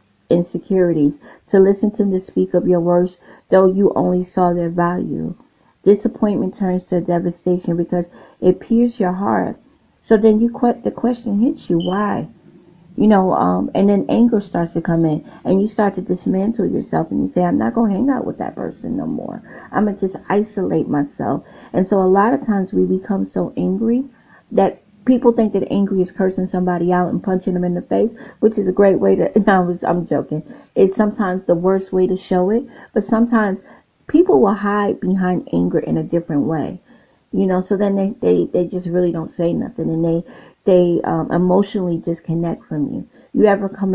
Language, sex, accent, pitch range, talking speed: English, female, American, 175-205 Hz, 195 wpm